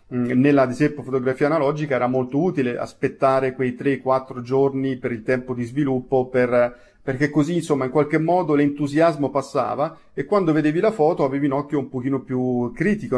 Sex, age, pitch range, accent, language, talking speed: male, 40-59, 125-150 Hz, native, Italian, 170 wpm